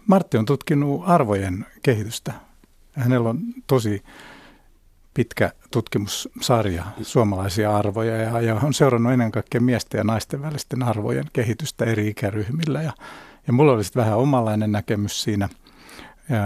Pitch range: 110-150 Hz